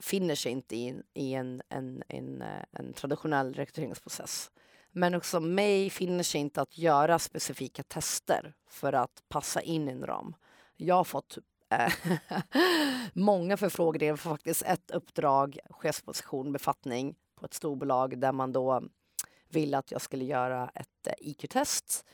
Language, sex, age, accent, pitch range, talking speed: Swedish, female, 30-49, native, 145-195 Hz, 145 wpm